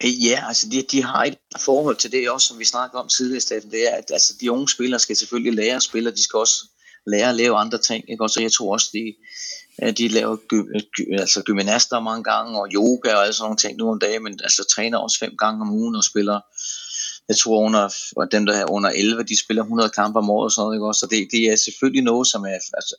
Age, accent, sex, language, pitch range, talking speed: 30-49, native, male, Danish, 100-115 Hz, 260 wpm